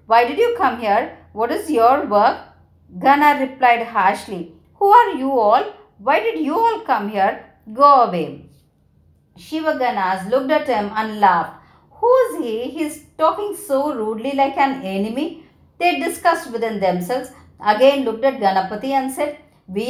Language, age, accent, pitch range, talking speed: Tamil, 50-69, native, 215-300 Hz, 160 wpm